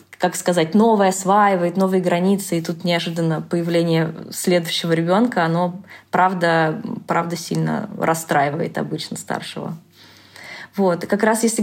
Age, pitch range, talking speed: 20-39, 165-200 Hz, 125 wpm